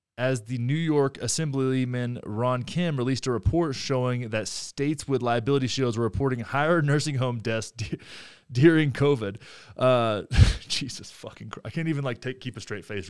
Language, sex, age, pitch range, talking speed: English, male, 20-39, 110-145 Hz, 175 wpm